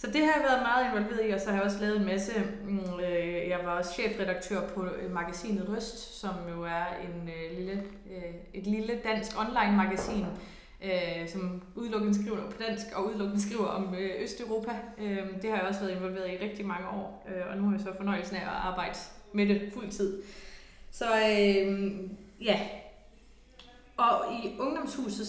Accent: Danish